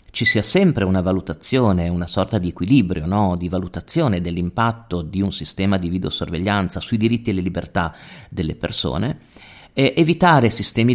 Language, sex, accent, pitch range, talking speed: Italian, male, native, 95-125 Hz, 140 wpm